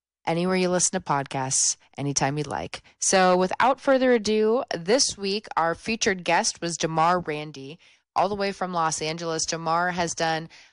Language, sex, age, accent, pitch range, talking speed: English, female, 20-39, American, 155-185 Hz, 160 wpm